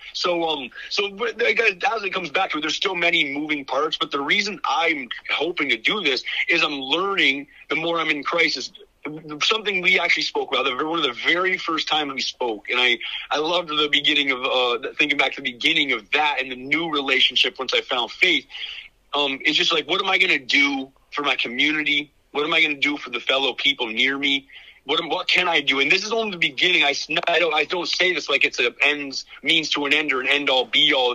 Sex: male